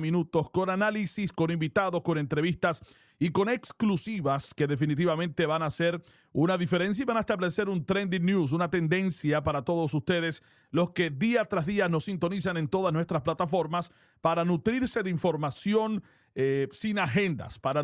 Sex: male